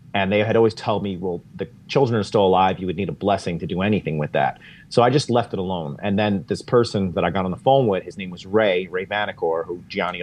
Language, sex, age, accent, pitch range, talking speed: English, male, 30-49, American, 90-110 Hz, 275 wpm